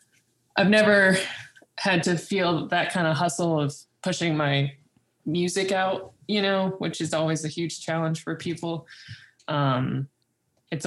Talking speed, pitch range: 145 wpm, 150-190 Hz